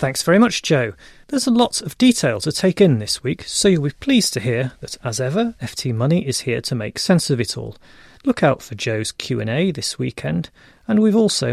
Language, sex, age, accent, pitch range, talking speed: English, male, 40-59, British, 115-185 Hz, 225 wpm